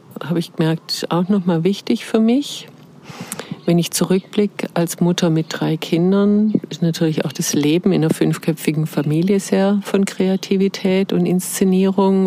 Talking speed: 145 wpm